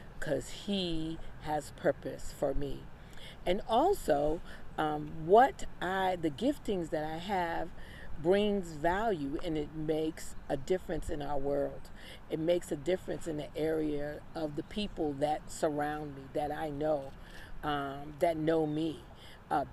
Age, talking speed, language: 40-59, 145 wpm, English